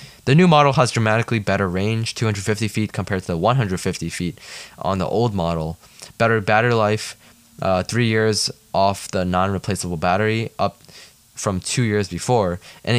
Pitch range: 95-115 Hz